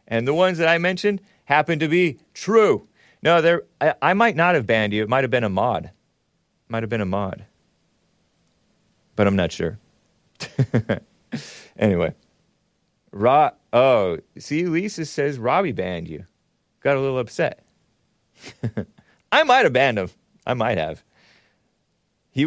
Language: English